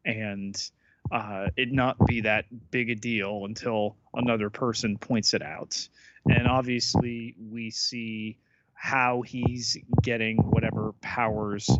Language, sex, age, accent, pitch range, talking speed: English, male, 30-49, American, 110-125 Hz, 120 wpm